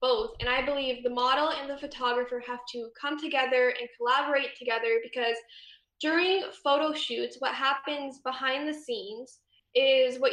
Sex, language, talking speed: female, English, 155 wpm